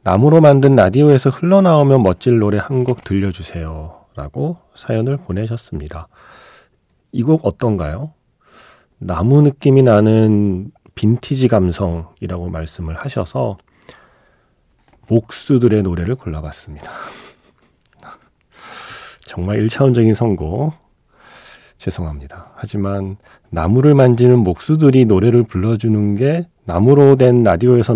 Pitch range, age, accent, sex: 90-135 Hz, 40-59, native, male